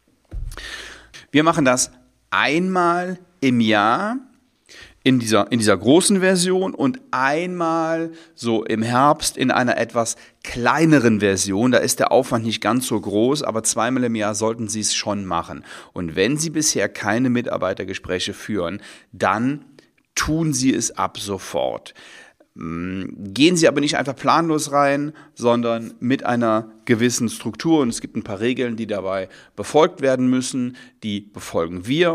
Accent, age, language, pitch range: German, 40-59, German, 105-145 Hz